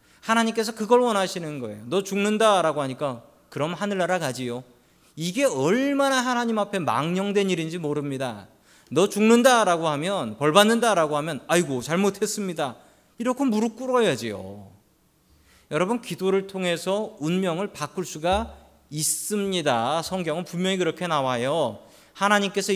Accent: native